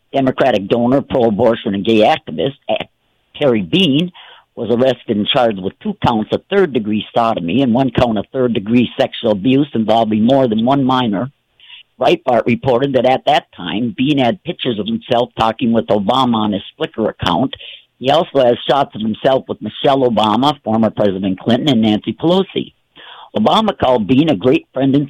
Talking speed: 165 wpm